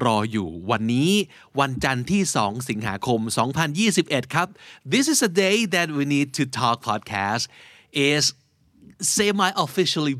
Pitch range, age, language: 110-150 Hz, 30-49, Thai